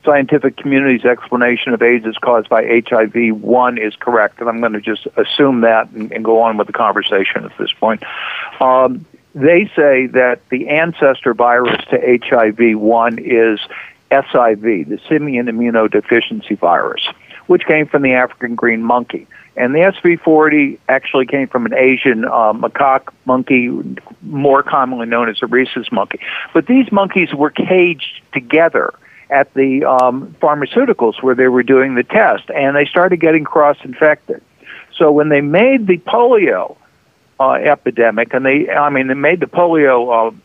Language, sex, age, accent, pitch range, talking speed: English, male, 60-79, American, 120-160 Hz, 160 wpm